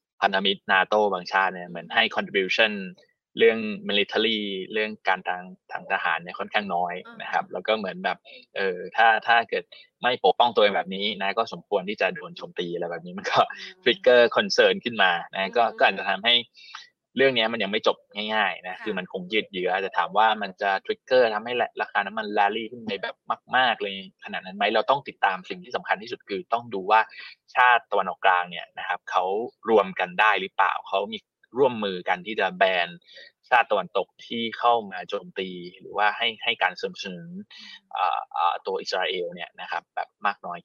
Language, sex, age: Thai, male, 20-39